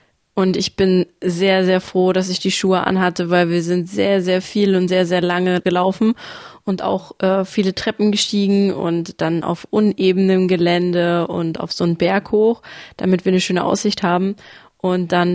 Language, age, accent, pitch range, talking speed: German, 20-39, German, 175-195 Hz, 185 wpm